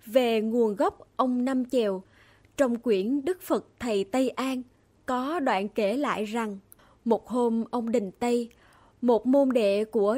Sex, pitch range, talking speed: female, 215-265 Hz, 160 wpm